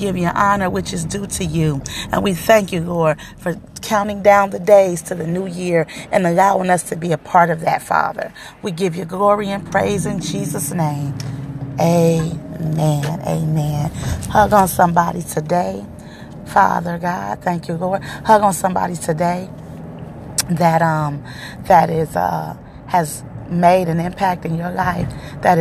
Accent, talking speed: American, 160 wpm